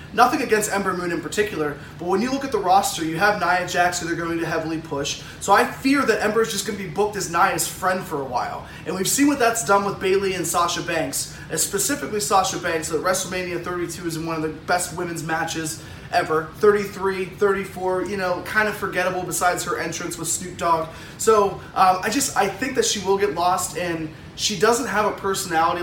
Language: English